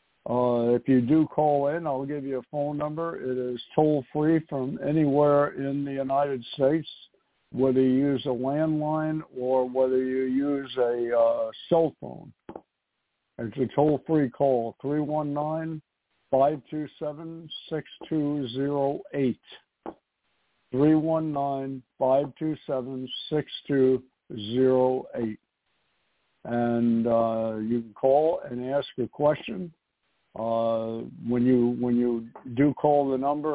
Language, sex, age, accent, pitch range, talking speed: English, male, 60-79, American, 125-150 Hz, 105 wpm